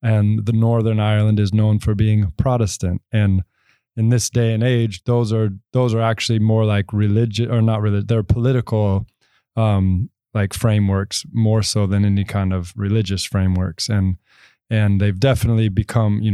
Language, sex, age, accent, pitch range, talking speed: English, male, 20-39, American, 105-115 Hz, 165 wpm